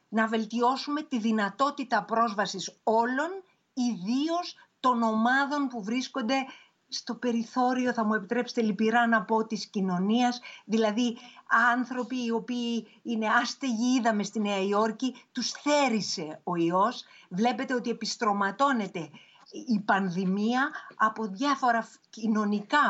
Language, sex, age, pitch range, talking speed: Greek, female, 50-69, 210-275 Hz, 115 wpm